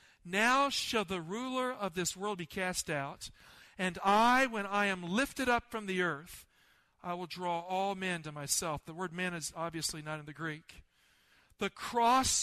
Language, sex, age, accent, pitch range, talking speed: English, male, 50-69, American, 165-210 Hz, 185 wpm